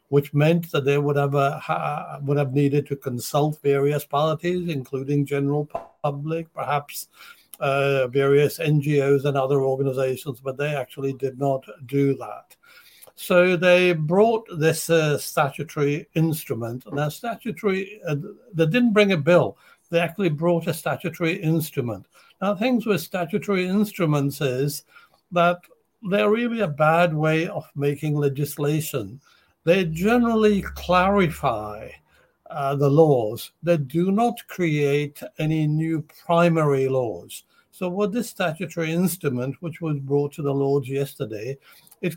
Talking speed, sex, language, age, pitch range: 135 wpm, male, English, 60-79, 145-175 Hz